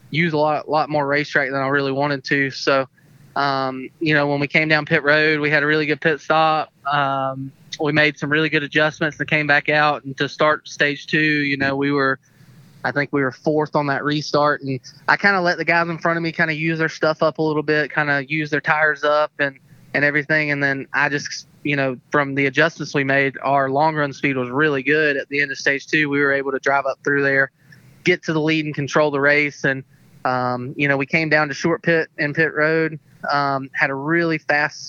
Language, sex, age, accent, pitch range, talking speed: English, male, 20-39, American, 140-155 Hz, 245 wpm